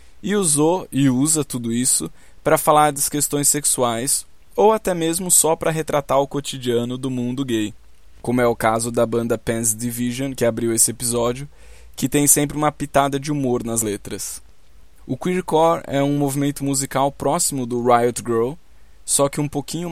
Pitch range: 115-140 Hz